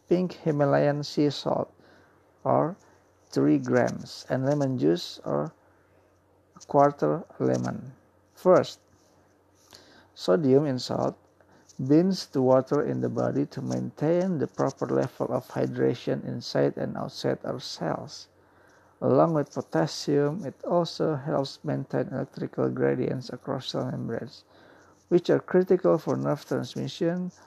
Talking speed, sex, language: 120 wpm, male, Indonesian